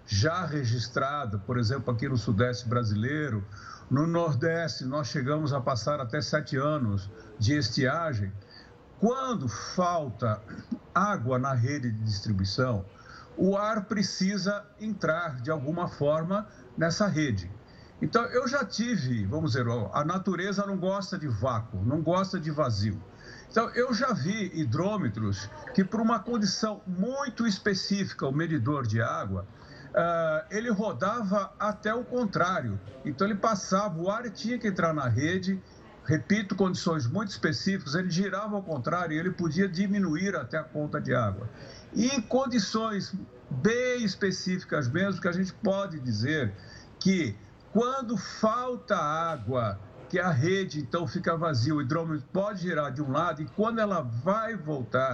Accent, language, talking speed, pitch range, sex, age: Brazilian, Portuguese, 145 wpm, 125-200 Hz, male, 60-79